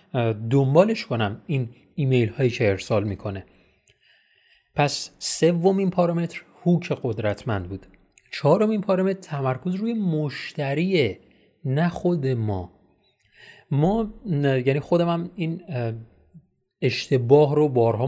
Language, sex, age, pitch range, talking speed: Persian, male, 30-49, 125-175 Hz, 95 wpm